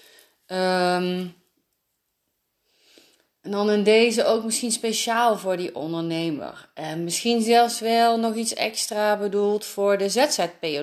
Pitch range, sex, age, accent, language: 165-220 Hz, female, 30-49, Dutch, Dutch